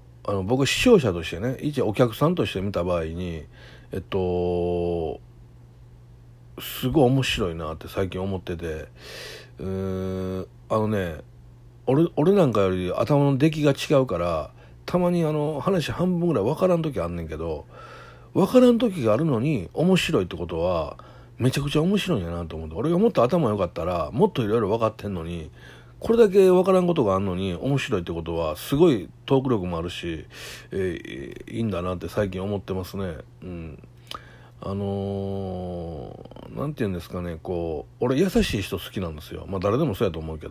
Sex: male